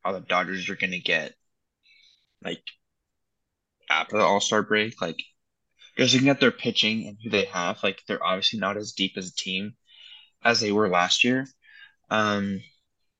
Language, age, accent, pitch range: English, 10-29, American, 95-110 Hz